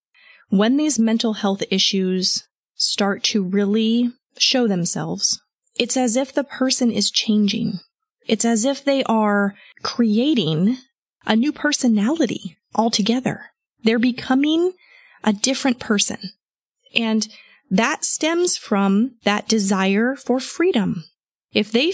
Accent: American